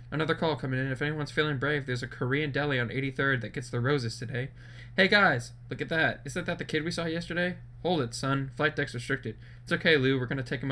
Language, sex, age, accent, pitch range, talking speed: English, male, 10-29, American, 120-145 Hz, 245 wpm